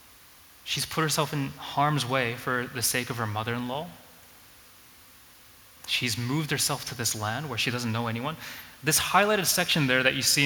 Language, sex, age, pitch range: English, male, 20-39, 115-145 Hz